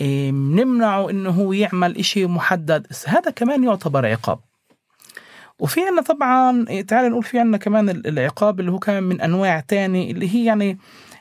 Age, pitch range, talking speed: 30-49, 165-210 Hz, 145 wpm